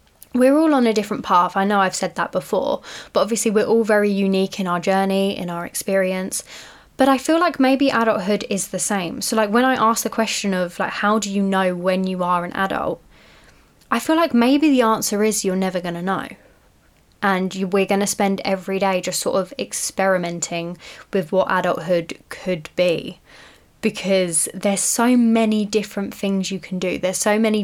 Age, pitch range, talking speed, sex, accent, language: 10-29, 185-220 Hz, 200 wpm, female, British, English